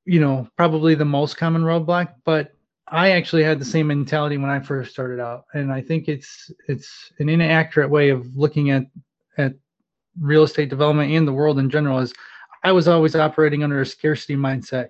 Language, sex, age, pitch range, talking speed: English, male, 20-39, 135-160 Hz, 195 wpm